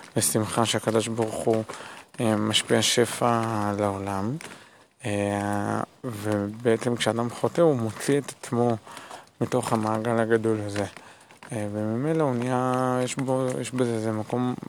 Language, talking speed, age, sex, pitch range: Hebrew, 110 wpm, 20-39, male, 105-120 Hz